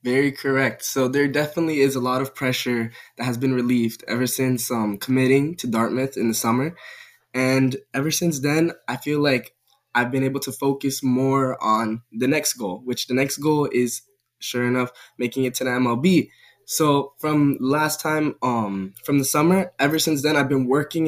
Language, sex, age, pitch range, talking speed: English, male, 10-29, 125-145 Hz, 190 wpm